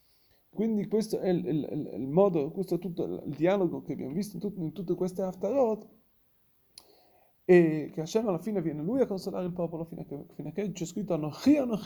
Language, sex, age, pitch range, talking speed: Italian, male, 30-49, 165-200 Hz, 205 wpm